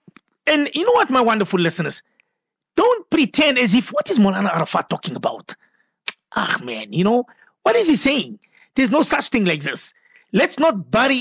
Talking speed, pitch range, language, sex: 180 wpm, 205-285 Hz, English, male